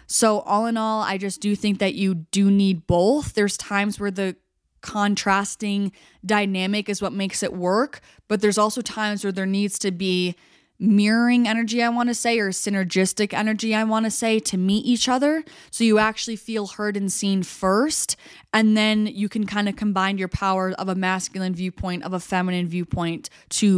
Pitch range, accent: 185-225 Hz, American